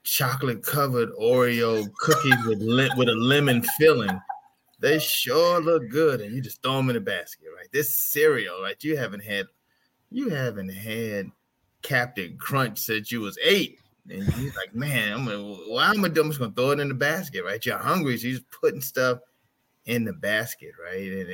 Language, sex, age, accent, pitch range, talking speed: English, male, 20-39, American, 105-160 Hz, 185 wpm